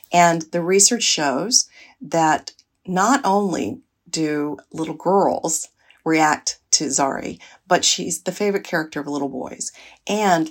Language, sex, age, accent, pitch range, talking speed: English, female, 50-69, American, 155-195 Hz, 125 wpm